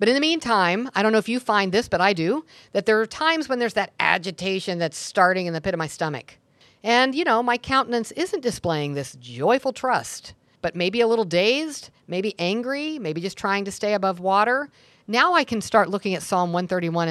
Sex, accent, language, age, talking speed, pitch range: female, American, English, 50-69, 220 wpm, 150-220 Hz